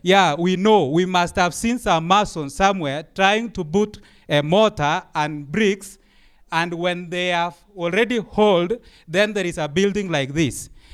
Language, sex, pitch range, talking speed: English, male, 180-230 Hz, 165 wpm